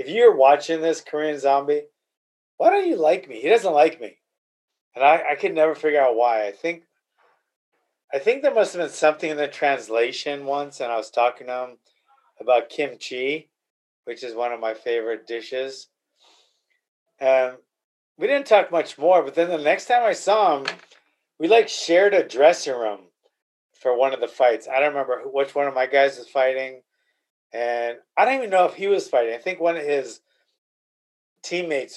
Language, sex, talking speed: English, male, 190 wpm